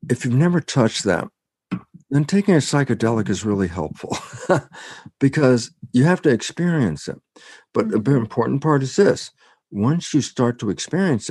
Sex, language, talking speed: male, German, 155 wpm